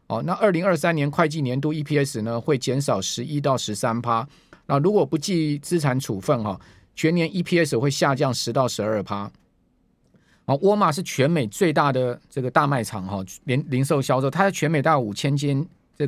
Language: Chinese